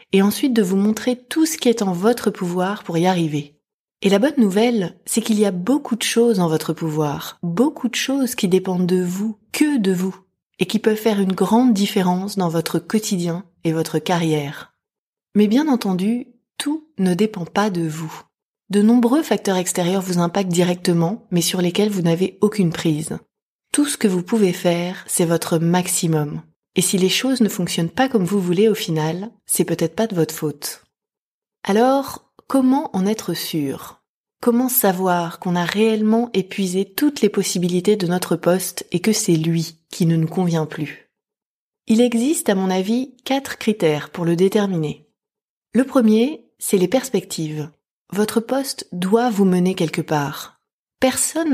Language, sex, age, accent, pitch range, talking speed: French, female, 30-49, French, 170-225 Hz, 175 wpm